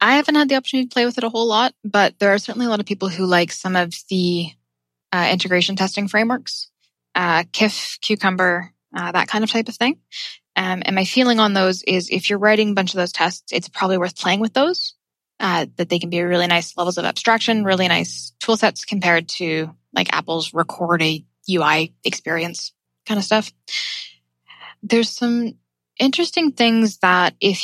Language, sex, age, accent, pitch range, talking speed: English, female, 10-29, American, 175-215 Hz, 200 wpm